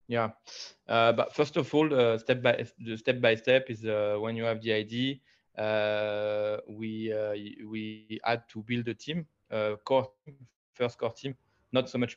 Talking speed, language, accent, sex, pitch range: 180 wpm, English, French, male, 105-125 Hz